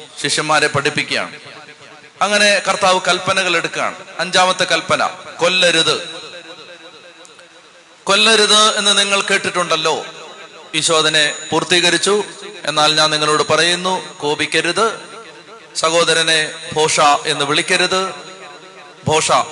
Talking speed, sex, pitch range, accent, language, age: 75 wpm, male, 150-180 Hz, native, Malayalam, 30-49